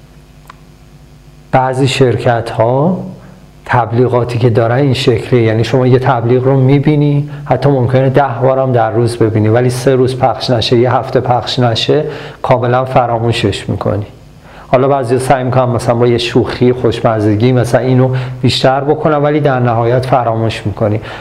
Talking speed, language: 145 wpm, Persian